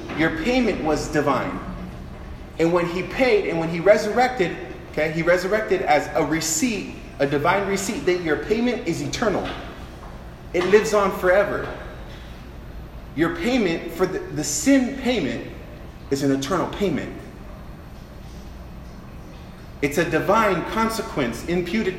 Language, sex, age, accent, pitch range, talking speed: English, male, 30-49, American, 135-185 Hz, 125 wpm